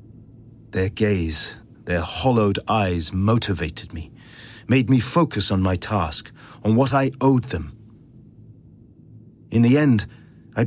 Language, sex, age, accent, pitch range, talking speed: English, male, 40-59, British, 90-120 Hz, 125 wpm